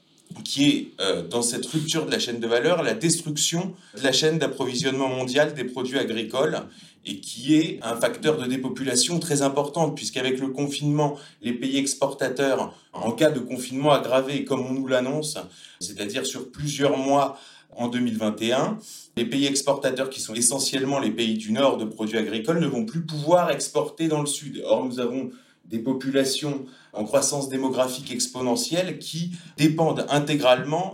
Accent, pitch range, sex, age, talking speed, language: French, 125-155 Hz, male, 30-49, 165 wpm, French